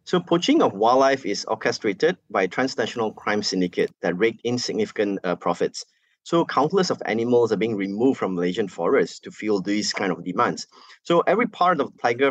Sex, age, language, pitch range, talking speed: male, 20-39, English, 100-145 Hz, 180 wpm